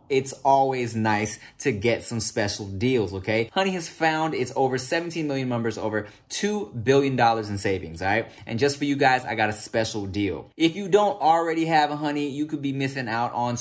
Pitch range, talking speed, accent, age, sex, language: 110-145 Hz, 205 wpm, American, 20-39, male, English